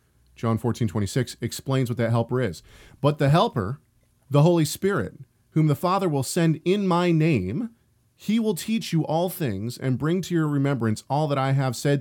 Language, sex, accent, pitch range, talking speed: English, male, American, 115-150 Hz, 190 wpm